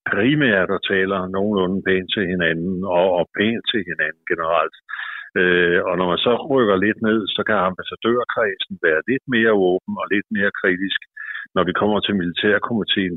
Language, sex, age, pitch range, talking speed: Danish, male, 60-79, 95-105 Hz, 160 wpm